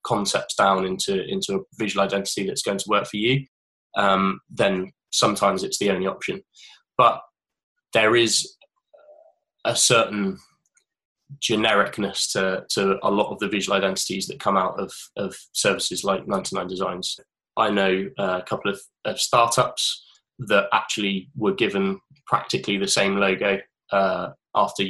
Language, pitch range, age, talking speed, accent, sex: English, 95-125 Hz, 10-29, 140 wpm, British, male